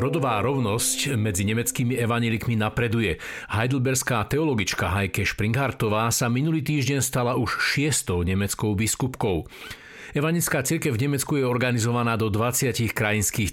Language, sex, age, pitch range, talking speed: Slovak, male, 50-69, 105-130 Hz, 120 wpm